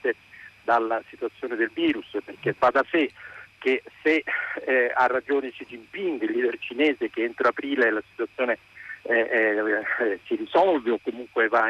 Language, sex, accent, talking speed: Italian, male, native, 150 wpm